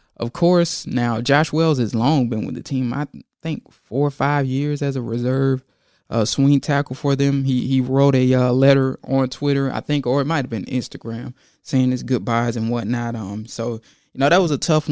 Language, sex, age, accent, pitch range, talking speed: English, male, 20-39, American, 120-135 Hz, 215 wpm